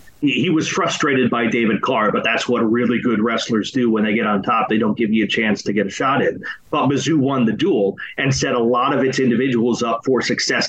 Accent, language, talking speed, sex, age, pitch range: American, English, 245 wpm, male, 30-49, 120-145 Hz